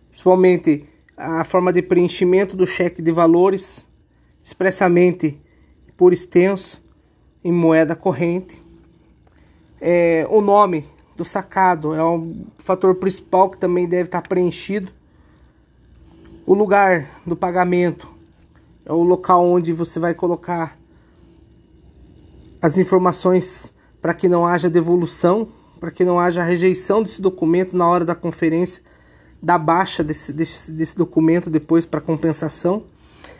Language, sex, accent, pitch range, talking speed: Portuguese, male, Brazilian, 165-185 Hz, 115 wpm